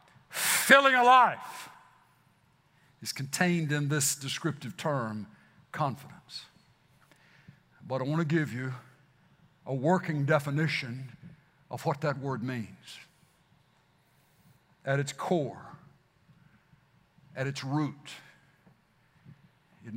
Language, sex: English, male